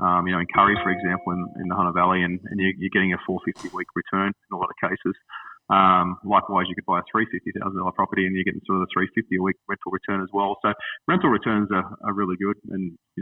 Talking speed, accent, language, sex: 255 wpm, Australian, English, male